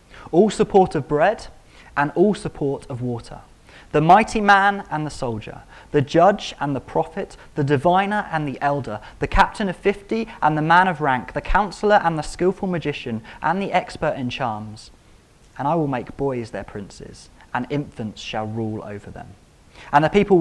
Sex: male